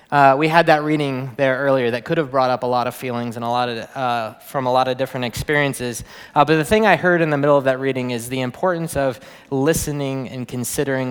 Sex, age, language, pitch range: male, 20-39, English, 130-170 Hz